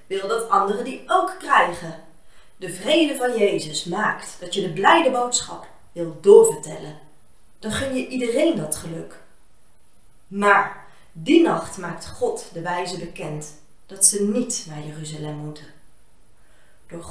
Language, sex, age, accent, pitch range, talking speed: Dutch, female, 30-49, Dutch, 170-260 Hz, 135 wpm